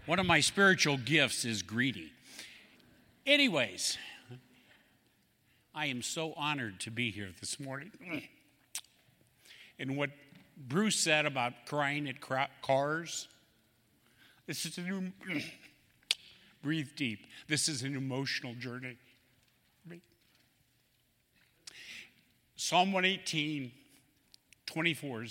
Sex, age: male, 60-79